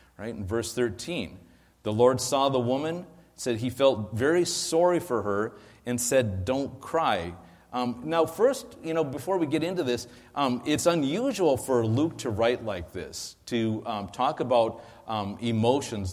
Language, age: English, 40-59